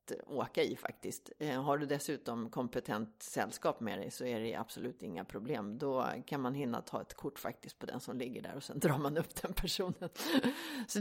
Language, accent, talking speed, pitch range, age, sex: English, Swedish, 205 wpm, 145-195 Hz, 30-49, female